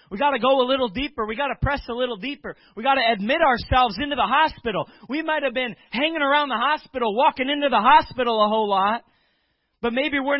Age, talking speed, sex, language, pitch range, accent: 20-39, 230 wpm, male, English, 220-280 Hz, American